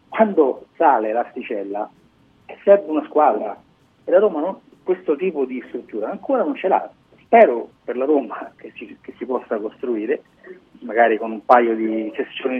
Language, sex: Italian, male